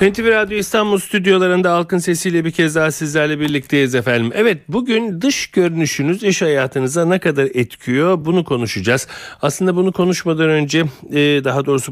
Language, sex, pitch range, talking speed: Turkish, male, 125-175 Hz, 145 wpm